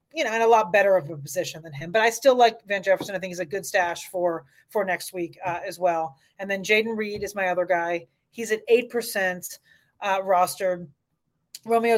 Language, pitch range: English, 175-215 Hz